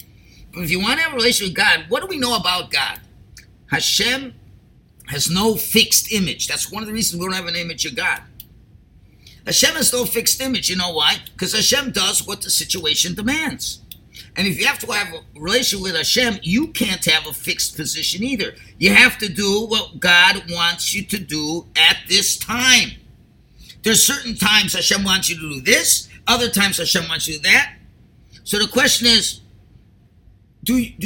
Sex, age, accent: male, 50-69, American